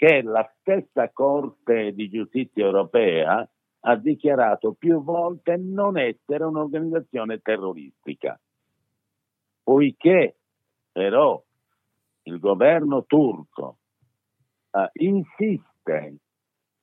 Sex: male